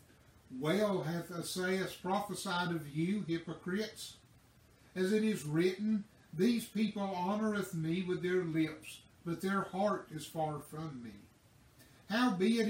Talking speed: 125 wpm